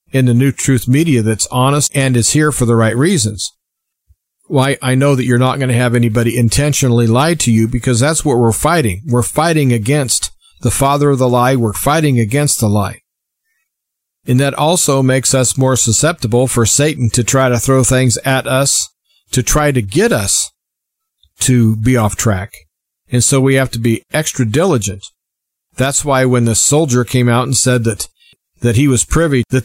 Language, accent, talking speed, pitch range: English, American, 190 wpm, 115-140 Hz